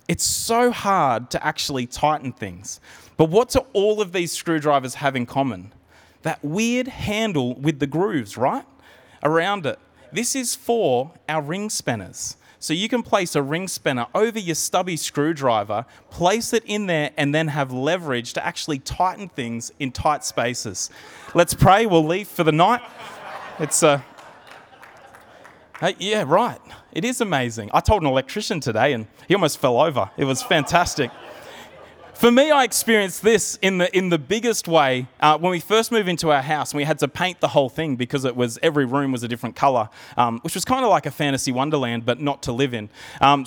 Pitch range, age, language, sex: 135-195 Hz, 30-49, English, male